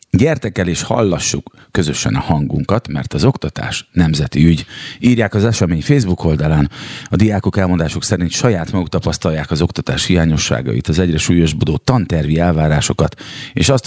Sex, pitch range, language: male, 75-105 Hz, Hungarian